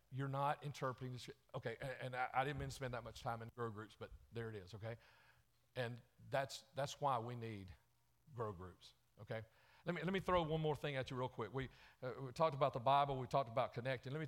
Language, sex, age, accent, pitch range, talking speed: English, male, 50-69, American, 115-150 Hz, 250 wpm